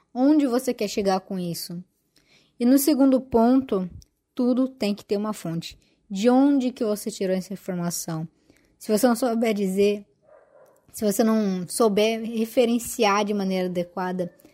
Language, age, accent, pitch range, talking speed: Portuguese, 10-29, Brazilian, 185-225 Hz, 150 wpm